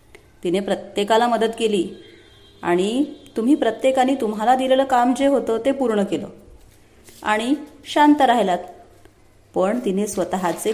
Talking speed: 115 wpm